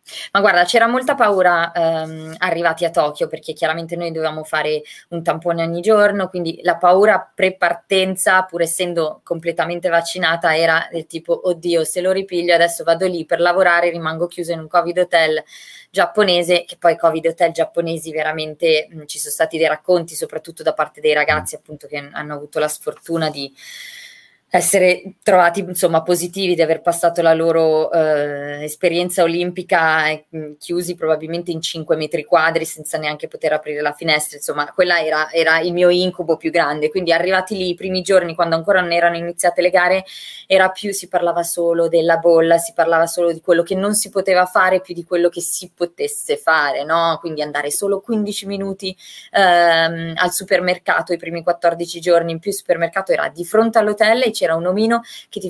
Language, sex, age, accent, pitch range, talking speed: Italian, female, 20-39, native, 165-185 Hz, 180 wpm